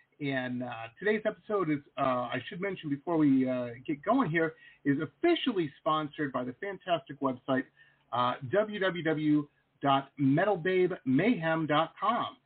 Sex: male